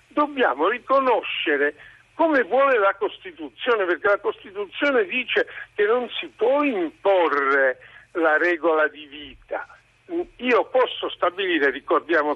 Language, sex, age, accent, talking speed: Italian, male, 60-79, native, 110 wpm